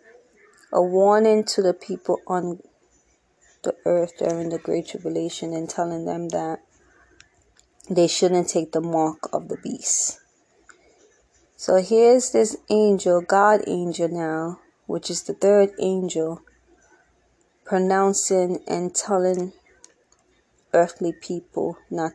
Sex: female